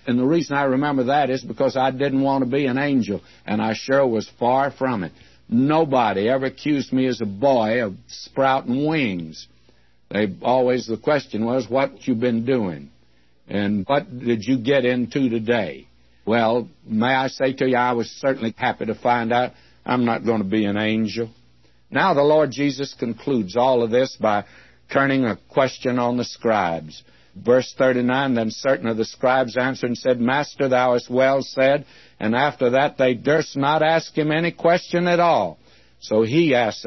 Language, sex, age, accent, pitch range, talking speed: English, male, 60-79, American, 115-140 Hz, 185 wpm